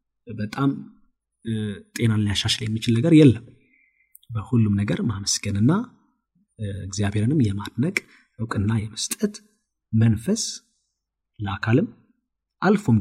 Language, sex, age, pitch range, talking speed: Amharic, male, 30-49, 105-135 Hz, 75 wpm